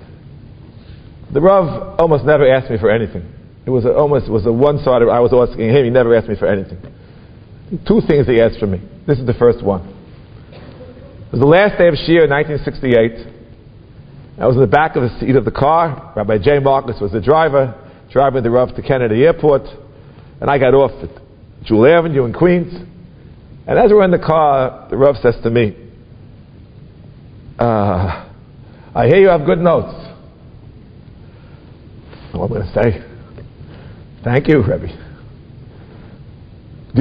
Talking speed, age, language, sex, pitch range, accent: 170 wpm, 50-69, English, male, 115-145 Hz, American